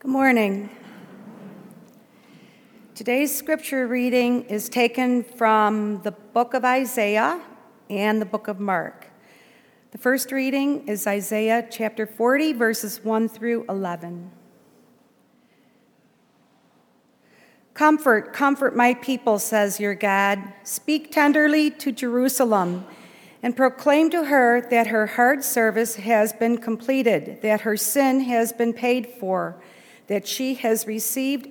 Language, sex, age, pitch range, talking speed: English, female, 50-69, 215-250 Hz, 115 wpm